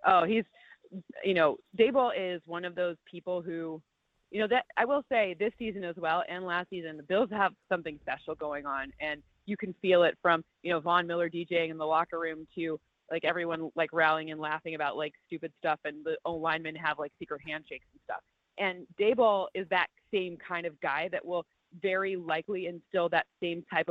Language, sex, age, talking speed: English, female, 30-49, 210 wpm